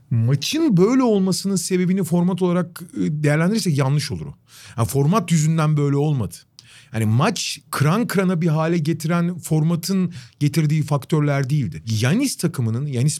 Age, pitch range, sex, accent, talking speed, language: 40-59, 125-185 Hz, male, native, 130 wpm, Turkish